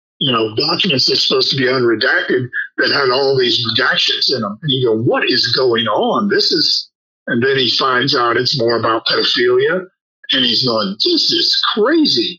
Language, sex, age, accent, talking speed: English, male, 50-69, American, 190 wpm